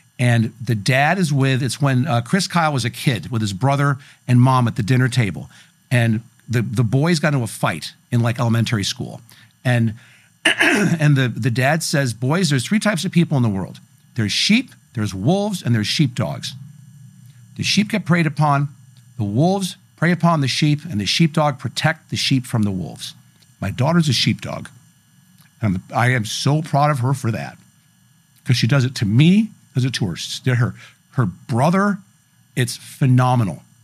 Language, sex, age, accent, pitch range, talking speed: English, male, 50-69, American, 120-165 Hz, 185 wpm